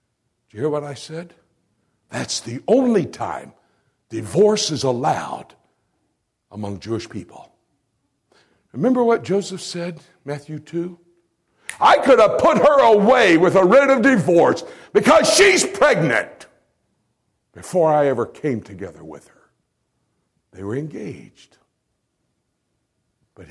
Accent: American